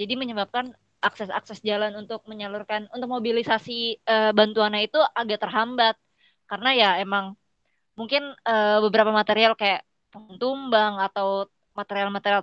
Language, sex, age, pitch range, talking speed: Indonesian, female, 20-39, 205-245 Hz, 120 wpm